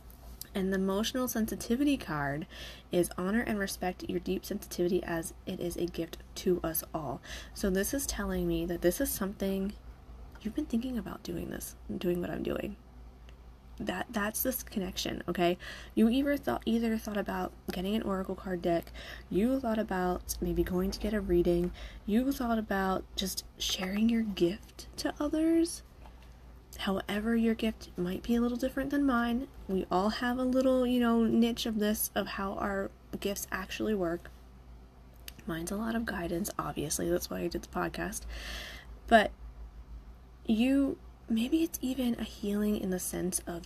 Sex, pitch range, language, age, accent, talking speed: female, 170-230 Hz, English, 20-39, American, 170 wpm